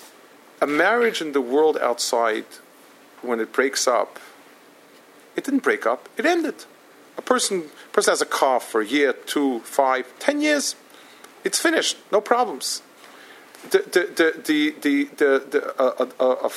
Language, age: English, 50-69